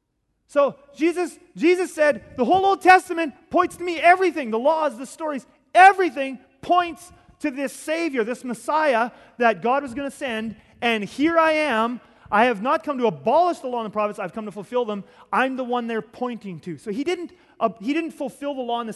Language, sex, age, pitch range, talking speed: English, male, 30-49, 180-250 Hz, 205 wpm